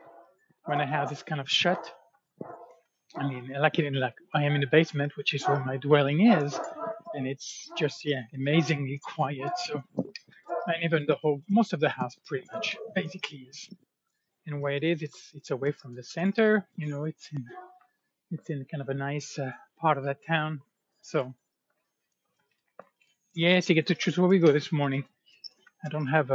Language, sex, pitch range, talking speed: English, male, 140-175 Hz, 190 wpm